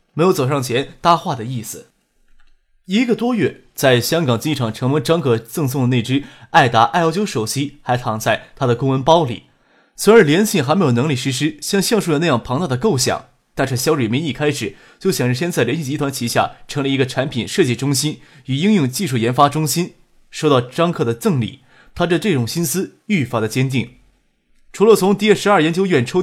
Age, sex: 20-39, male